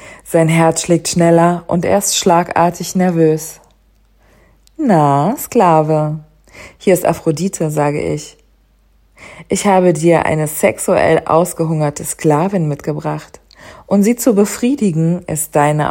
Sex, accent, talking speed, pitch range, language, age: female, German, 115 wpm, 155-180 Hz, German, 40-59